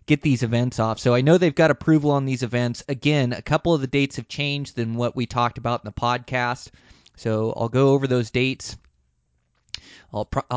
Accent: American